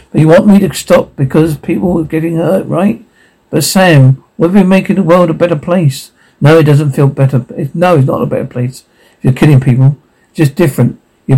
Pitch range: 135-170 Hz